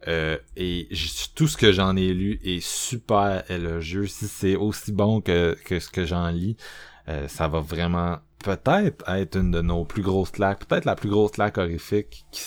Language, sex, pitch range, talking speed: French, male, 85-105 Hz, 195 wpm